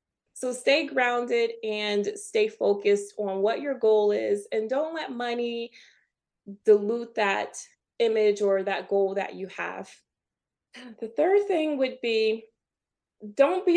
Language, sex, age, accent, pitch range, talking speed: English, female, 20-39, American, 200-255 Hz, 135 wpm